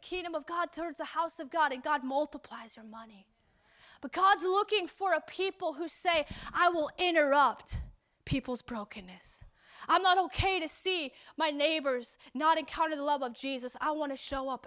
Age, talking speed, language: 20-39, 180 wpm, English